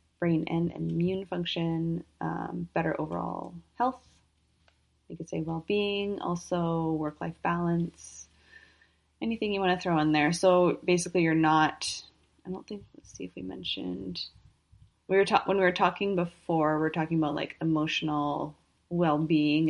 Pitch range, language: 145-175 Hz, English